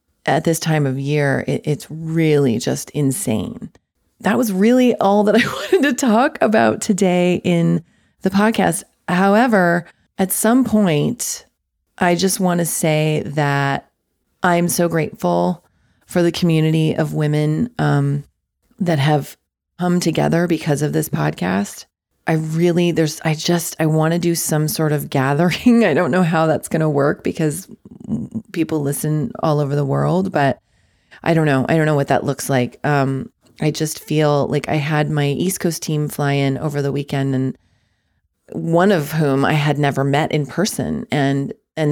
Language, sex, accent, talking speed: English, female, American, 170 wpm